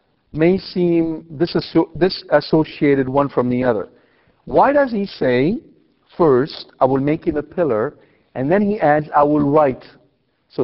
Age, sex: 50-69, male